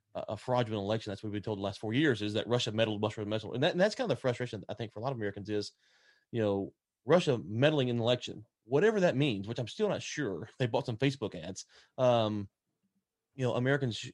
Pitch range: 105-135 Hz